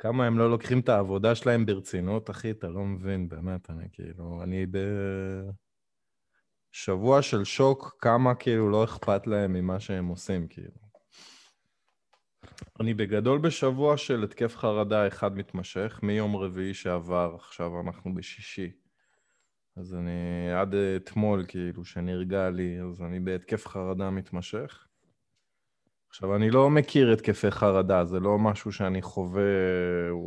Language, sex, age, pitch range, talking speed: Hebrew, male, 20-39, 95-115 Hz, 130 wpm